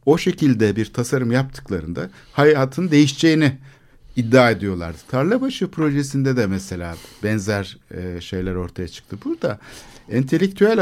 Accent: native